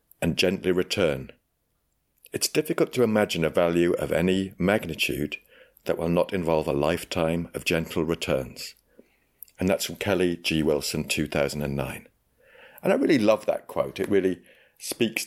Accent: British